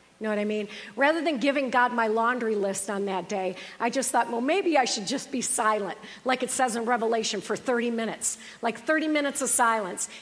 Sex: female